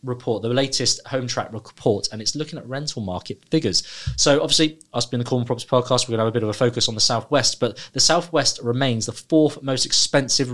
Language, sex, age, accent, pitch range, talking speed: English, male, 20-39, British, 105-125 Hz, 235 wpm